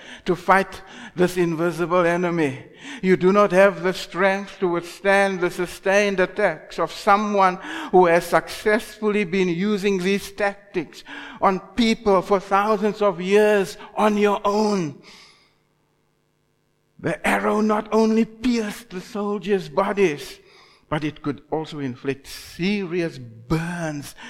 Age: 60-79